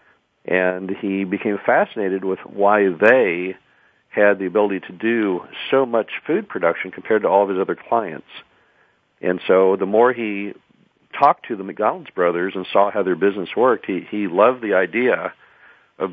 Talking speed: 165 wpm